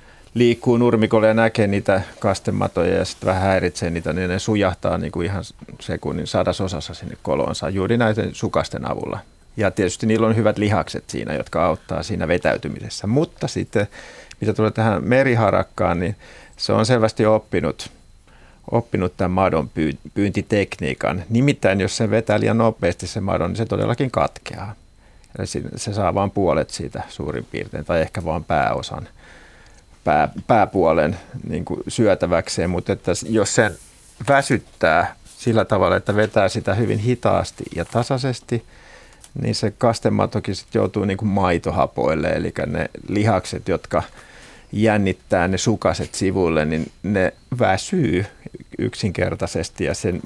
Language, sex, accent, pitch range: Finnish, male, native, 95-115 Hz